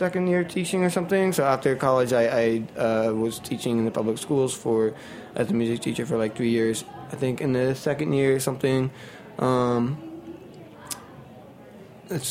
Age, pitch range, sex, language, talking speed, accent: 20-39, 115-140 Hz, male, English, 175 wpm, American